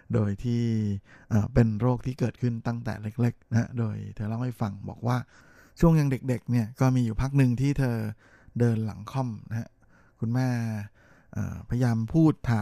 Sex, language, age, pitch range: male, Thai, 20-39, 110-125 Hz